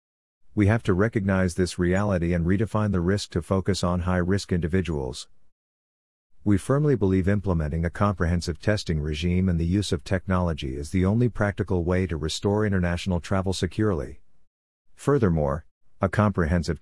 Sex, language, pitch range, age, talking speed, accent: male, English, 80-95 Hz, 50-69, 145 wpm, American